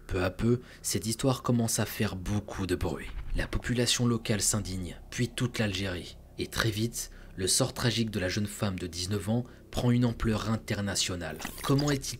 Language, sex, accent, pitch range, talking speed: French, male, French, 100-120 Hz, 180 wpm